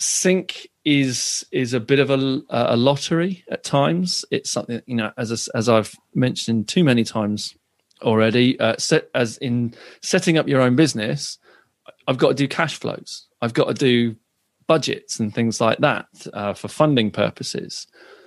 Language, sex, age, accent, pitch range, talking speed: English, male, 30-49, British, 115-150 Hz, 175 wpm